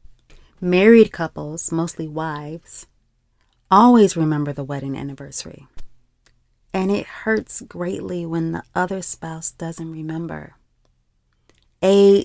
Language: English